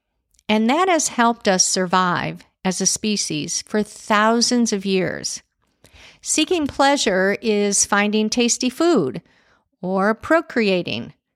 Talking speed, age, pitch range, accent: 110 wpm, 50-69, 200-255 Hz, American